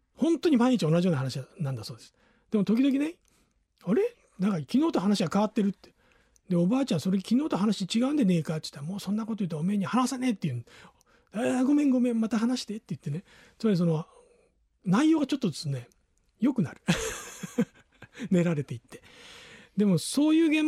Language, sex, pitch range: Japanese, male, 150-230 Hz